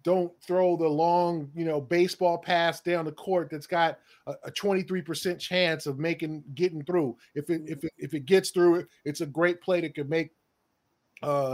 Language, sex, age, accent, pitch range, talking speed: English, male, 20-39, American, 150-180 Hz, 200 wpm